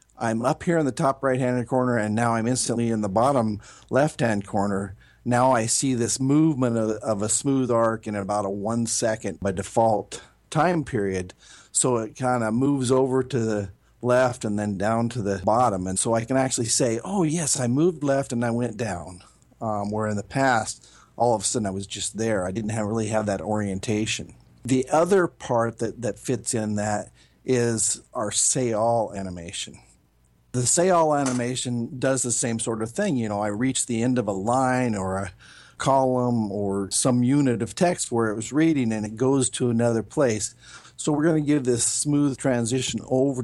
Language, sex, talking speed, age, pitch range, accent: English, male, 195 wpm, 50-69, 105-130 Hz, American